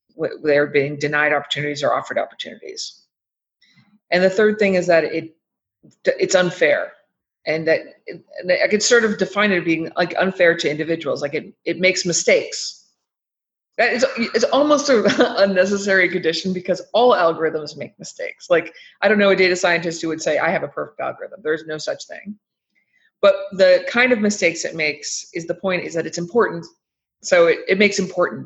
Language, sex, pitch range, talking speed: English, female, 165-225 Hz, 180 wpm